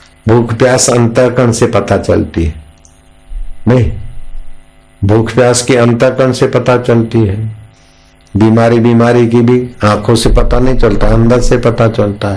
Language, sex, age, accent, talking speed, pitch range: Hindi, male, 60-79, native, 125 wpm, 90-130 Hz